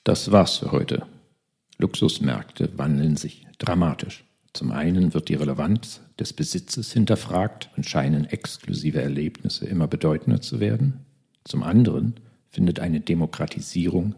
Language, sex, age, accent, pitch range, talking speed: German, male, 50-69, German, 85-125 Hz, 125 wpm